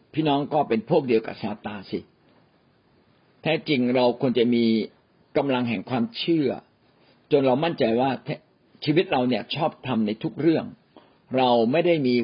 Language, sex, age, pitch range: Thai, male, 60-79, 120-160 Hz